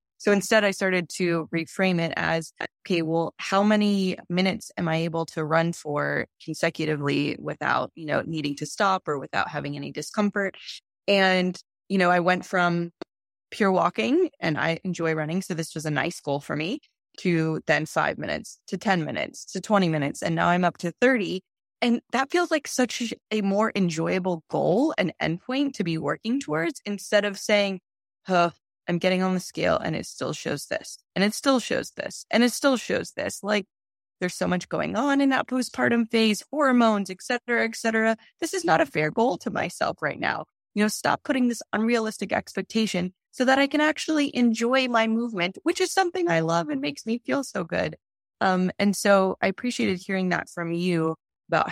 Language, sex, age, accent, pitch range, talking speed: English, female, 20-39, American, 170-230 Hz, 195 wpm